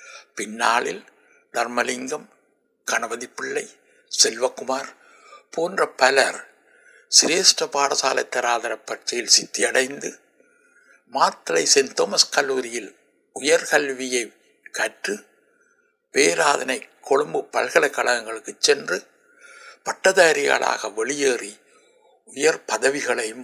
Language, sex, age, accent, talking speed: Tamil, male, 60-79, native, 65 wpm